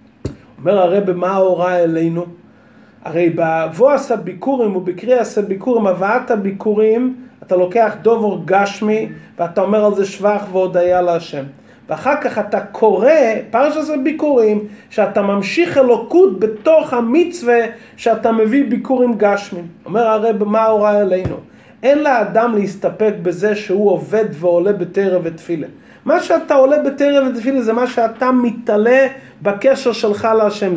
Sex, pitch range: male, 200-255 Hz